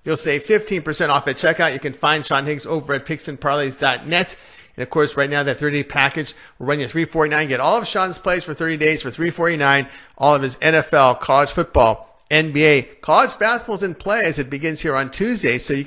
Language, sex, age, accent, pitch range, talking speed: English, male, 50-69, American, 140-170 Hz, 210 wpm